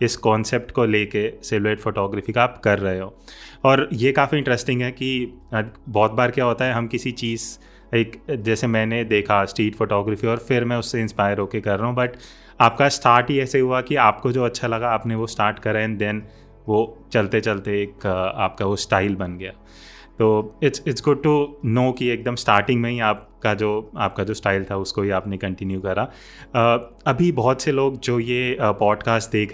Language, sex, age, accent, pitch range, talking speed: Hindi, male, 30-49, native, 105-125 Hz, 195 wpm